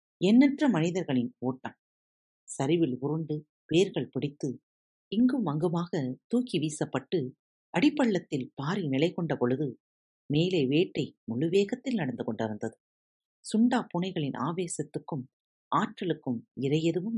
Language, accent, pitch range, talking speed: Tamil, native, 130-195 Hz, 85 wpm